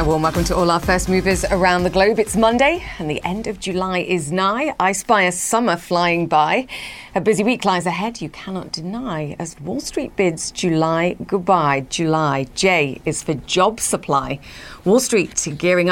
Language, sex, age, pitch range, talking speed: English, female, 40-59, 160-205 Hz, 180 wpm